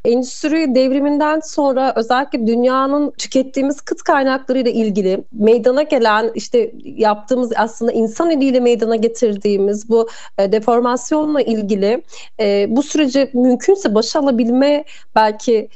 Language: Turkish